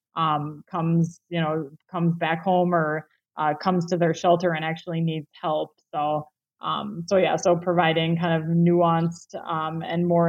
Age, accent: 20-39, American